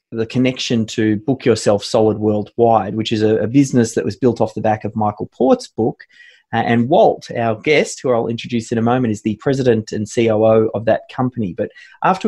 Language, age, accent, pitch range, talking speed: English, 20-39, Australian, 110-140 Hz, 210 wpm